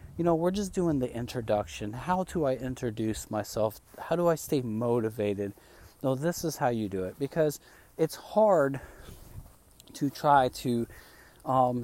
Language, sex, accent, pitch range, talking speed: English, male, American, 115-140 Hz, 155 wpm